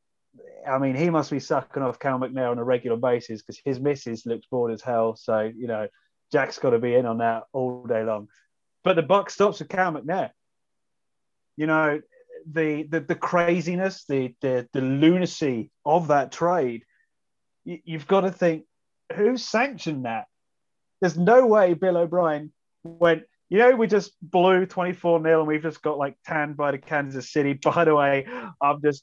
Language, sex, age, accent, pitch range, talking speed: English, male, 30-49, British, 135-180 Hz, 180 wpm